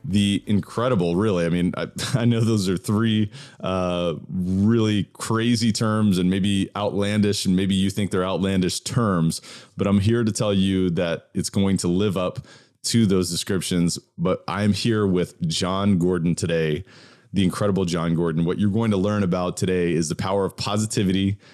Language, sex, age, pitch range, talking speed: English, male, 30-49, 90-110 Hz, 175 wpm